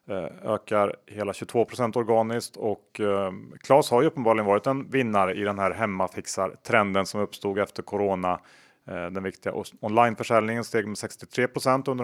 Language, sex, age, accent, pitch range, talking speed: Swedish, male, 30-49, Norwegian, 100-125 Hz, 145 wpm